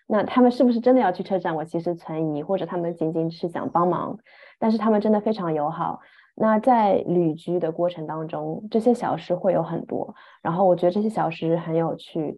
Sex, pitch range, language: female, 165-195 Hz, Chinese